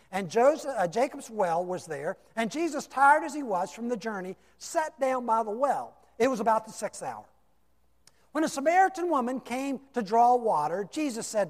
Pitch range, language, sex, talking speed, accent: 170-255 Hz, English, male, 195 wpm, American